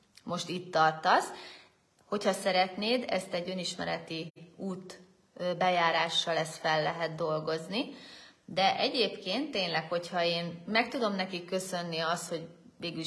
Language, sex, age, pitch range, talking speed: Hungarian, female, 30-49, 160-195 Hz, 120 wpm